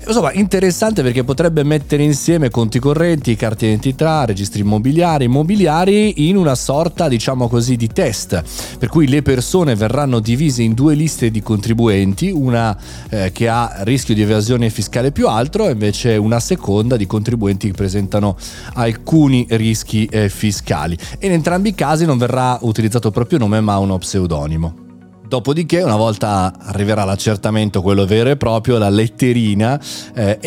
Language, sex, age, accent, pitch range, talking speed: Italian, male, 30-49, native, 100-135 Hz, 150 wpm